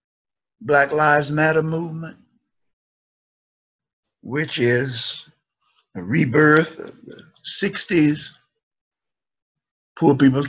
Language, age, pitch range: English, 60-79, 135-185 Hz